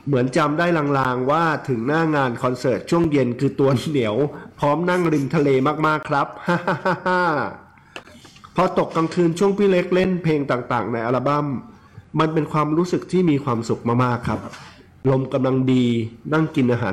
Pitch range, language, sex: 115-155 Hz, Thai, male